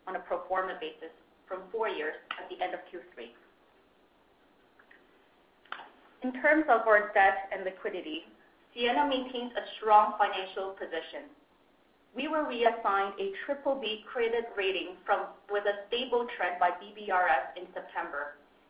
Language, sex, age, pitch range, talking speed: English, female, 30-49, 185-235 Hz, 140 wpm